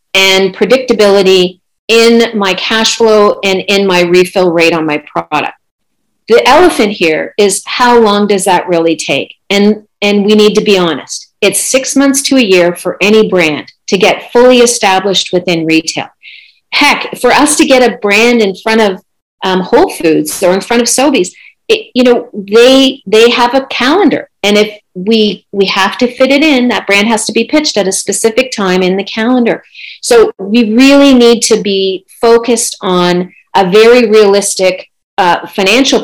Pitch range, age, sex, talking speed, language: 185-245 Hz, 40-59, female, 175 wpm, English